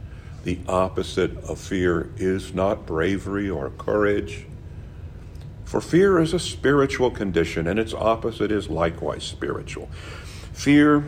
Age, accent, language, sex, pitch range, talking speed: 50-69, American, English, male, 85-110 Hz, 120 wpm